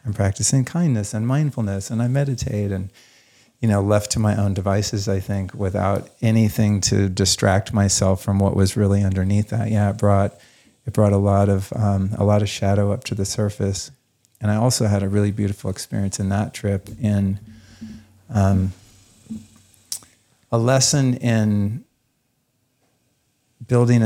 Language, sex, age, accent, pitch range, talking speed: English, male, 40-59, American, 100-120 Hz, 155 wpm